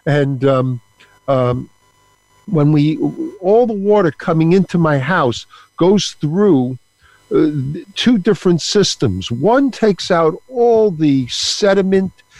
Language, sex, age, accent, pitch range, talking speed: English, male, 50-69, American, 140-200 Hz, 115 wpm